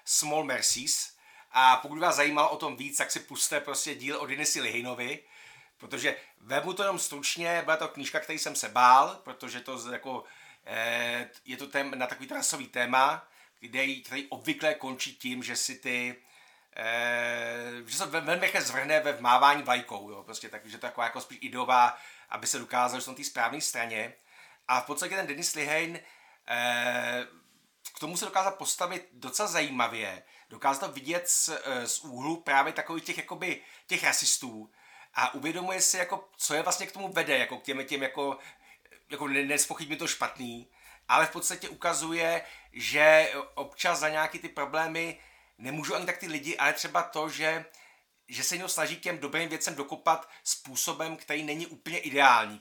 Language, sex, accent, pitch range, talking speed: Czech, male, native, 125-160 Hz, 165 wpm